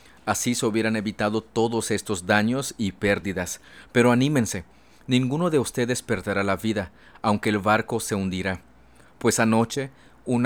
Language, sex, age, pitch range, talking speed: Spanish, male, 40-59, 100-120 Hz, 145 wpm